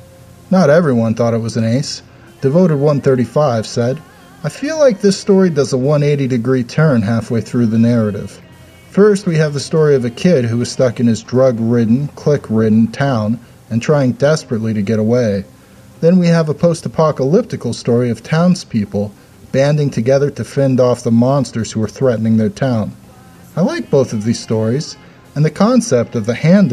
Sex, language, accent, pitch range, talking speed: male, English, American, 115-155 Hz, 175 wpm